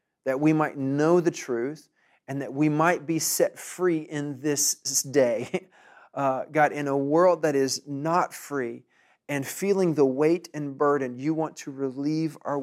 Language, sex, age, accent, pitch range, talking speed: English, male, 40-59, American, 130-155 Hz, 170 wpm